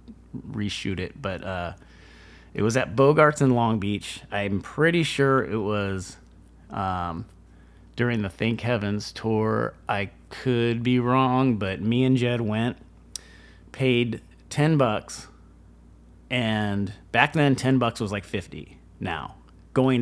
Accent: American